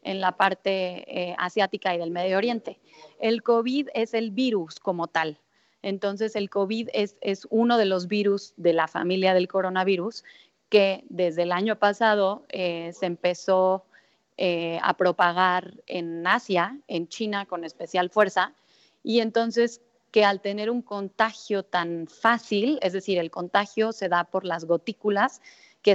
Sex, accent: female, Mexican